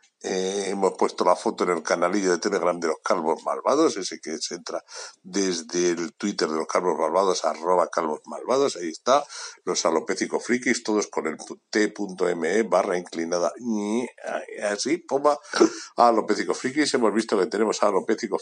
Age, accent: 60-79, Spanish